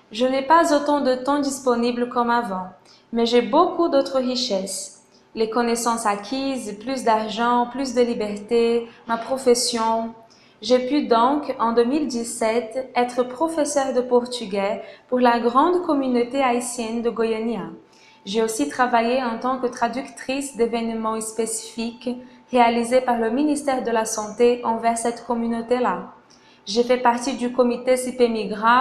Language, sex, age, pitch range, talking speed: Portuguese, female, 20-39, 225-265 Hz, 135 wpm